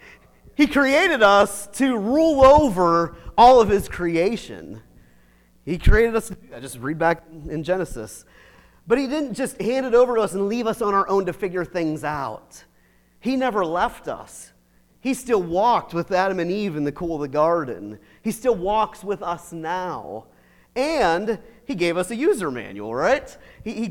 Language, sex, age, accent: English, male, 40-59, American